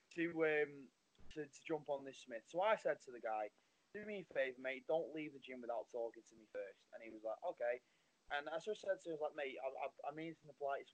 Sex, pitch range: male, 120-160 Hz